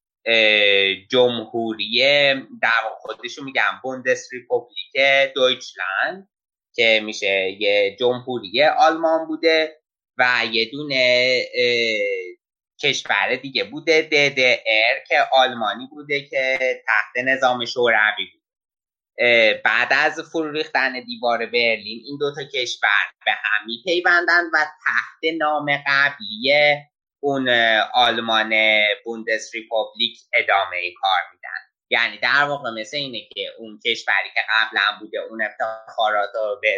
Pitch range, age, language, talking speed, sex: 115-175 Hz, 20-39, Persian, 110 wpm, male